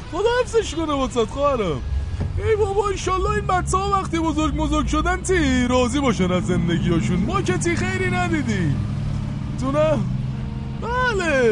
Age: 20-39